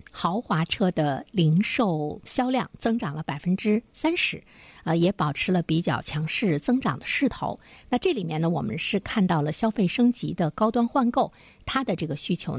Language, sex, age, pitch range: Chinese, female, 50-69, 160-225 Hz